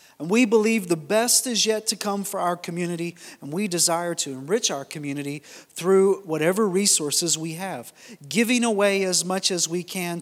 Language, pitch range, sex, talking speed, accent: English, 165-205 Hz, male, 180 wpm, American